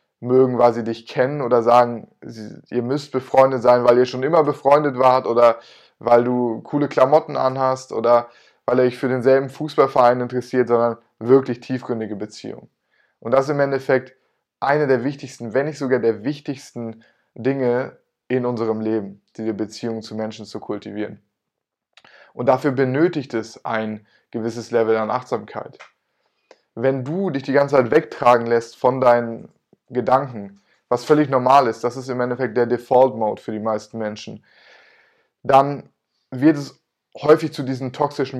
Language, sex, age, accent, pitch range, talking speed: German, male, 20-39, German, 115-135 Hz, 155 wpm